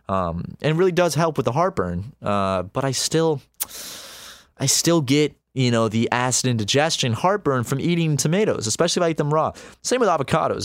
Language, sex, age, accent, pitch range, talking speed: English, male, 20-39, American, 105-145 Hz, 185 wpm